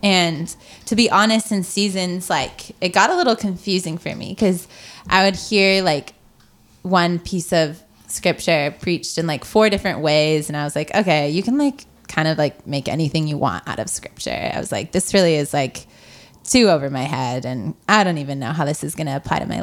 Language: English